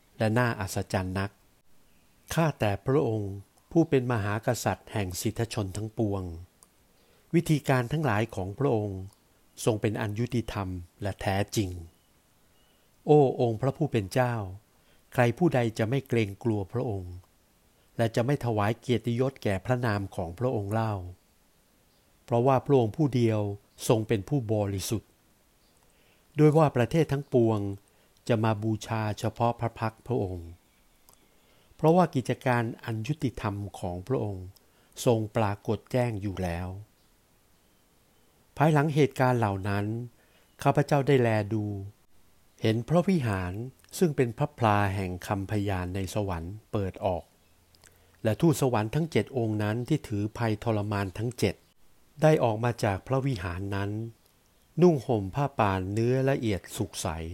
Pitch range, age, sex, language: 100-125 Hz, 60-79, male, Thai